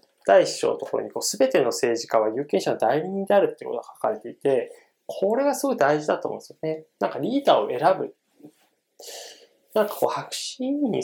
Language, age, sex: Japanese, 20-39, male